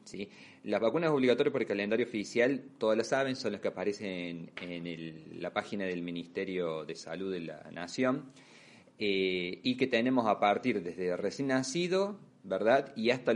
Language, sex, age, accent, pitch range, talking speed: Spanish, male, 30-49, Argentinian, 100-130 Hz, 170 wpm